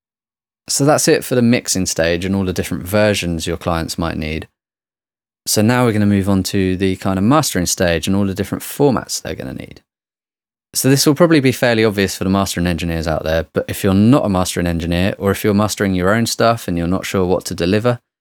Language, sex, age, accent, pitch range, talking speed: English, male, 20-39, British, 85-105 Hz, 235 wpm